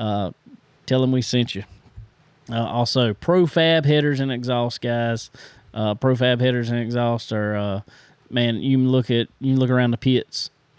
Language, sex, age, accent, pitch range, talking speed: English, male, 20-39, American, 115-145 Hz, 170 wpm